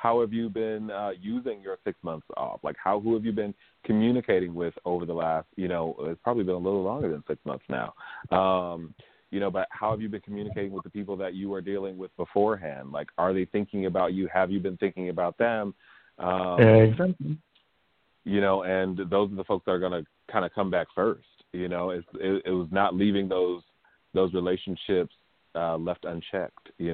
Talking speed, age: 210 wpm, 30-49